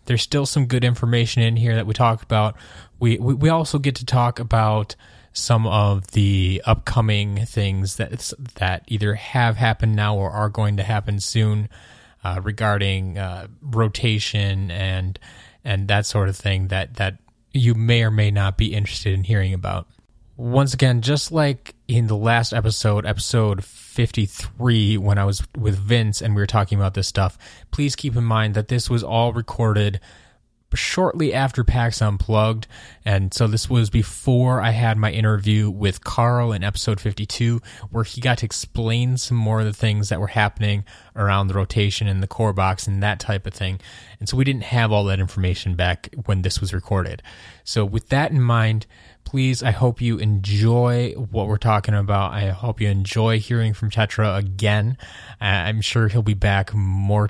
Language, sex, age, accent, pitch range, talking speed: English, male, 20-39, American, 100-115 Hz, 180 wpm